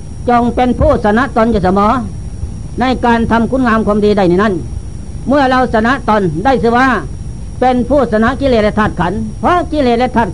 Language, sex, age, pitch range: Thai, female, 60-79, 200-250 Hz